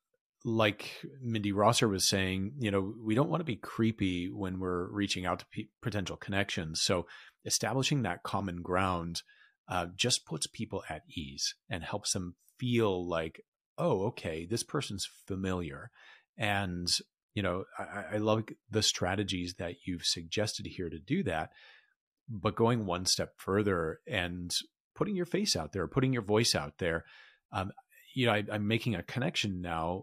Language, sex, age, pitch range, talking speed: English, male, 30-49, 95-115 Hz, 160 wpm